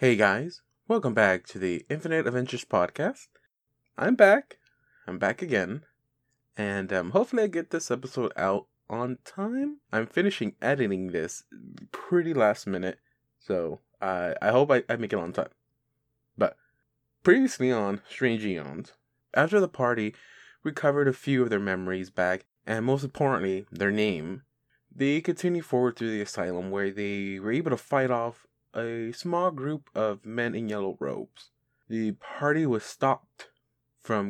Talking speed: 150 wpm